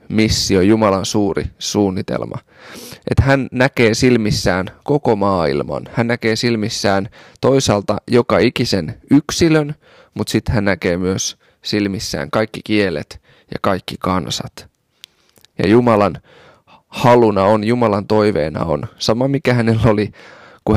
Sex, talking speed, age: male, 115 wpm, 20-39